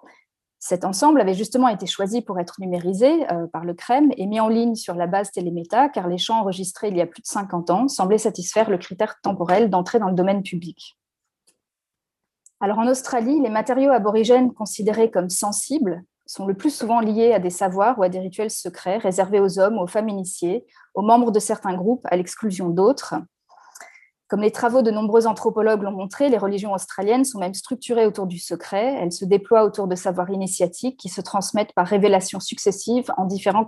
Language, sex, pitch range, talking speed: French, female, 185-225 Hz, 195 wpm